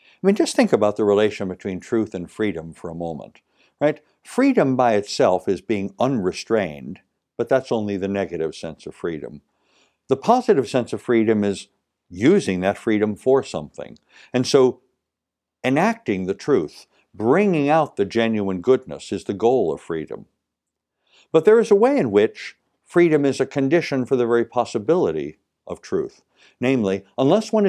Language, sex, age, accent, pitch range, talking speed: English, male, 60-79, American, 100-135 Hz, 165 wpm